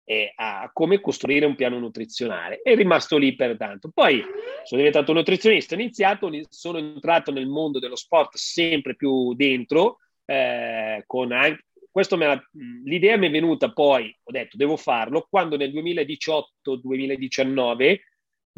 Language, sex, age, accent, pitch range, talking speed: Italian, male, 40-59, native, 135-190 Hz, 140 wpm